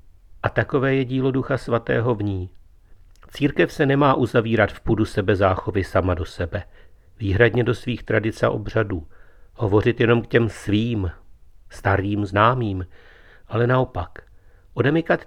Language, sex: Czech, male